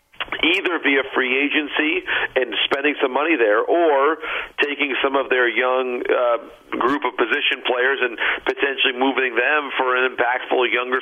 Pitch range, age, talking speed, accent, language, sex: 130-185 Hz, 50-69, 150 wpm, American, English, male